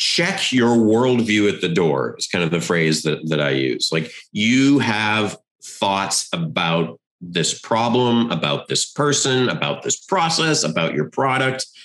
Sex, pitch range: male, 90-120 Hz